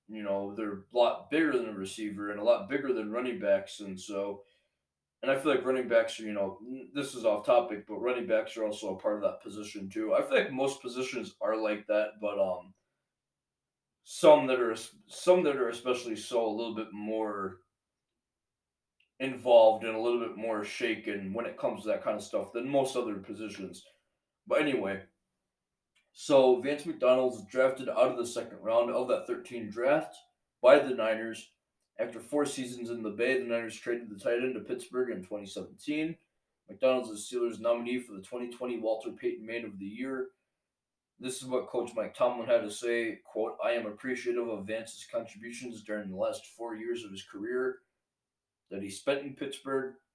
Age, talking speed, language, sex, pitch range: 20-39, 190 wpm, English, male, 105-130 Hz